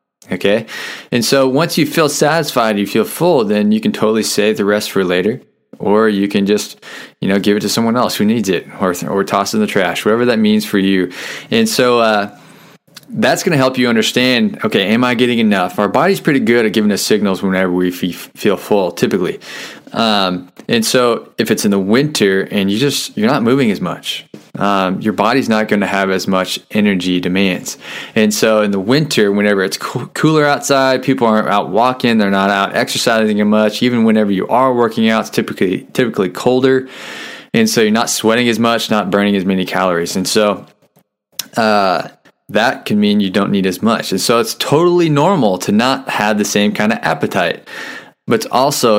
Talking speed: 210 wpm